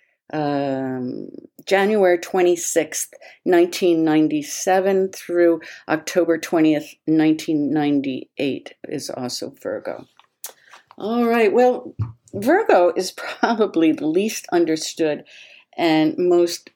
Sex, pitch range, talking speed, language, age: female, 155-250 Hz, 80 wpm, English, 50-69